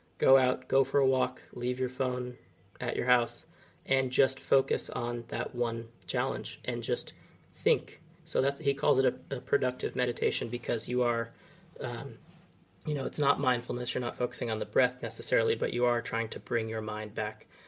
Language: English